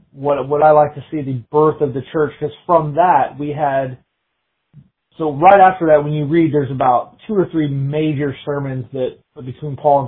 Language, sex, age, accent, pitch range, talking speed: English, male, 30-49, American, 130-155 Hz, 200 wpm